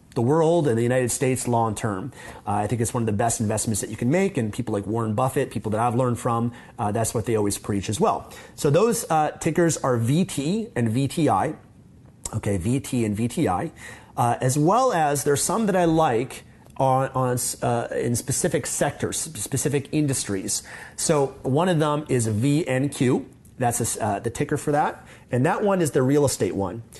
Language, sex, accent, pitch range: English, male, American, 115-140 Hz